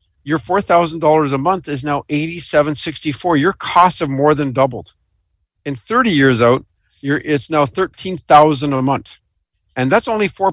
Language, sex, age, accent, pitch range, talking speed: English, male, 50-69, American, 120-160 Hz, 175 wpm